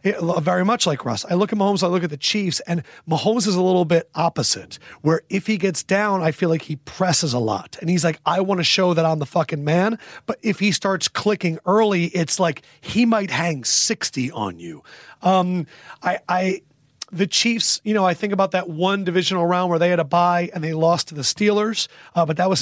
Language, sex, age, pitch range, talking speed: English, male, 30-49, 160-195 Hz, 230 wpm